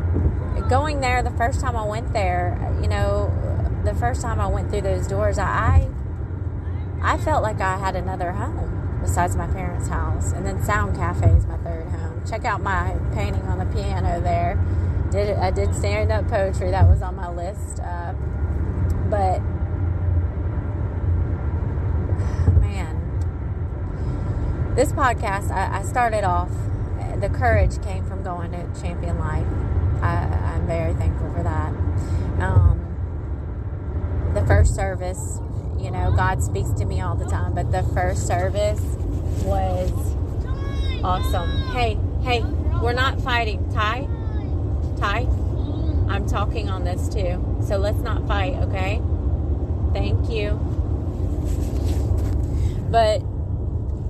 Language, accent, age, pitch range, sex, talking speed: English, American, 30-49, 90-95 Hz, female, 130 wpm